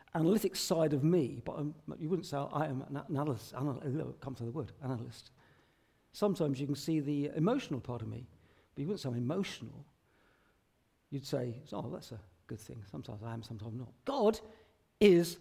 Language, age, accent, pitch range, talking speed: English, 50-69, British, 140-210 Hz, 200 wpm